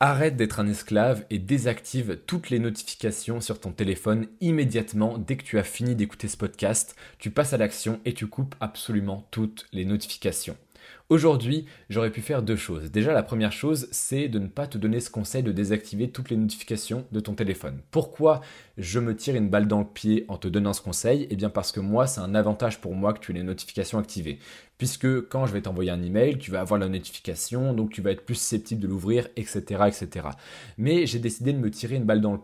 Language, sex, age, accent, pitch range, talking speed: French, male, 20-39, French, 100-120 Hz, 220 wpm